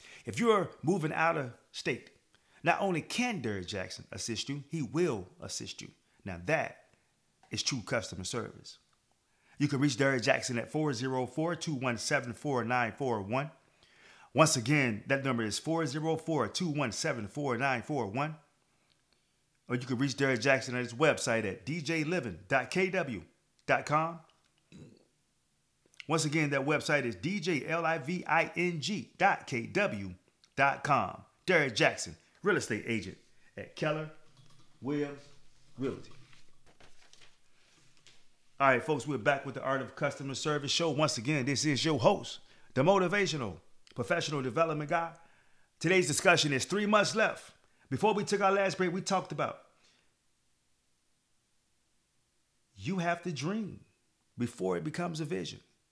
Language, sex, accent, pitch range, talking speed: English, male, American, 130-165 Hz, 115 wpm